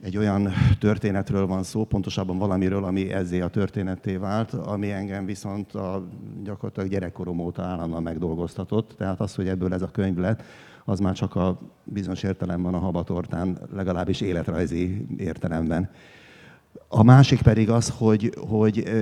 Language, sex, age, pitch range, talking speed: Hungarian, male, 60-79, 90-105 Hz, 150 wpm